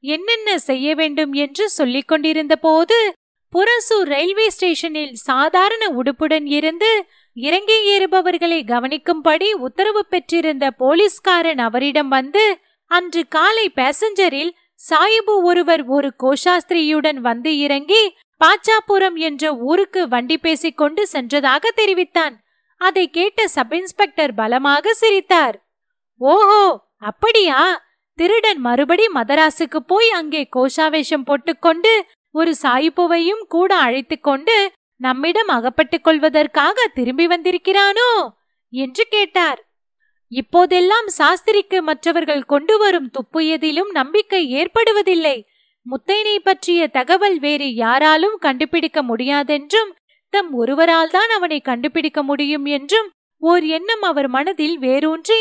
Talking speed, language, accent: 85 wpm, Tamil, native